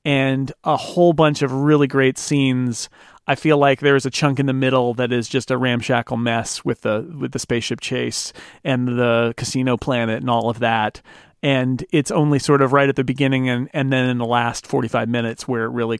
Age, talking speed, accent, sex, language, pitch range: 40-59, 220 wpm, American, male, English, 125-155 Hz